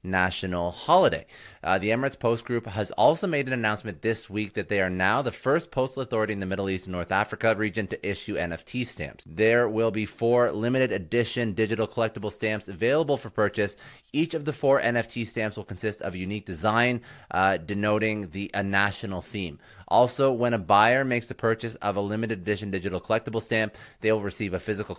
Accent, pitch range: American, 100-120 Hz